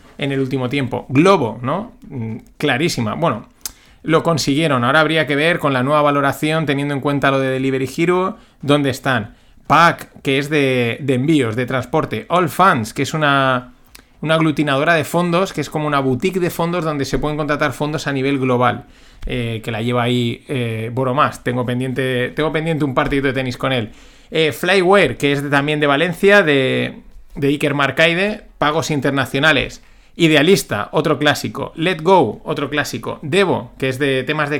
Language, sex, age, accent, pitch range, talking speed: Spanish, male, 30-49, Spanish, 130-165 Hz, 180 wpm